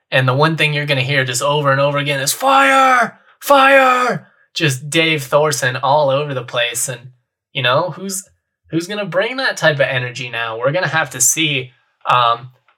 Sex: male